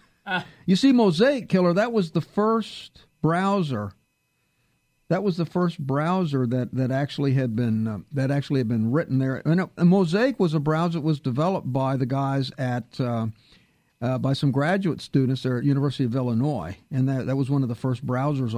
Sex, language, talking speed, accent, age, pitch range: male, English, 195 wpm, American, 50-69, 135-200 Hz